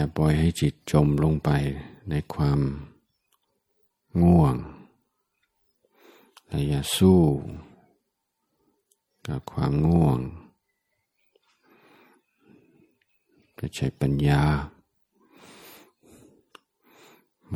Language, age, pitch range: Thai, 60-79, 70-80 Hz